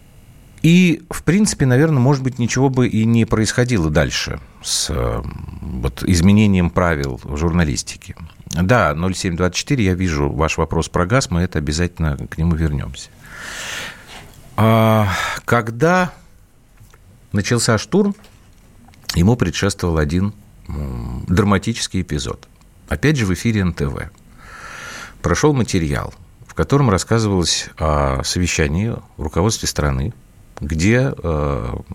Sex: male